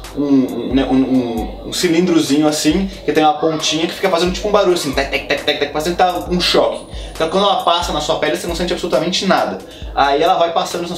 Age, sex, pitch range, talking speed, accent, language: 20-39, male, 140-175 Hz, 235 wpm, Brazilian, Portuguese